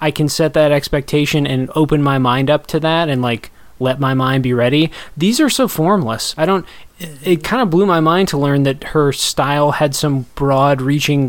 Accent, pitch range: American, 135-170 Hz